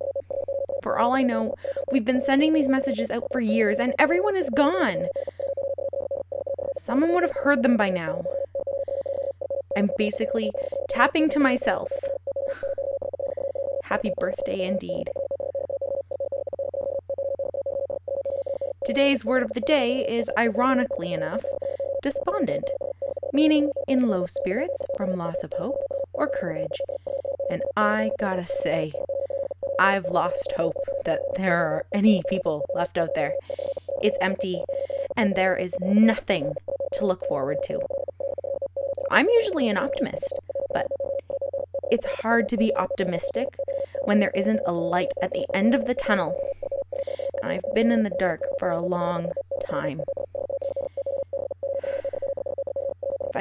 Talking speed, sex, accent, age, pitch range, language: 120 wpm, female, American, 20-39, 215-275 Hz, English